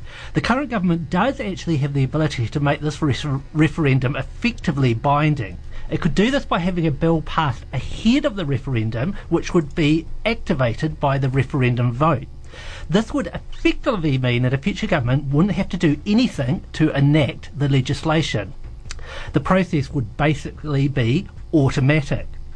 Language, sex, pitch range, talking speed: English, male, 135-175 Hz, 155 wpm